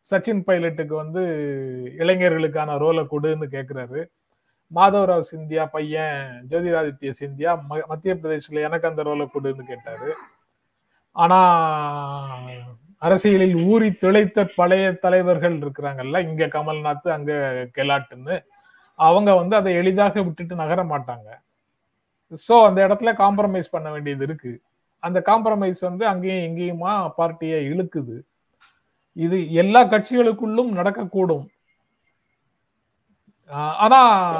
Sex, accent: male, native